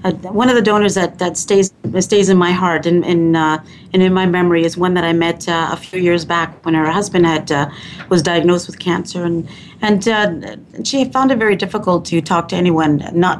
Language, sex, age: English, female, 40-59